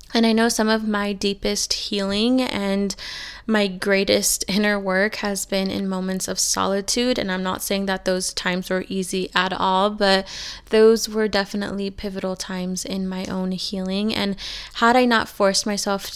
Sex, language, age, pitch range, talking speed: female, English, 20-39, 190-215 Hz, 170 wpm